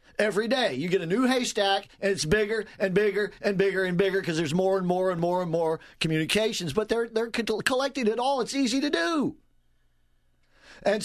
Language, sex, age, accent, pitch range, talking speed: English, male, 50-69, American, 160-220 Hz, 200 wpm